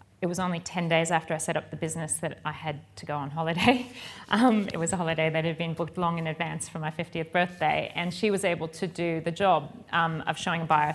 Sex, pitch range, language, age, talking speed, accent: female, 165-215 Hz, English, 30-49, 260 wpm, Australian